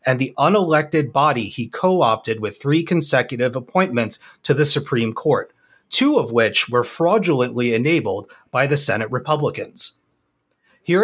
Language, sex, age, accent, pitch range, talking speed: English, male, 30-49, American, 120-160 Hz, 135 wpm